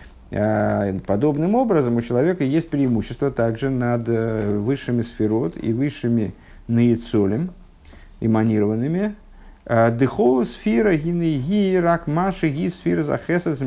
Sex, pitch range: male, 105-135 Hz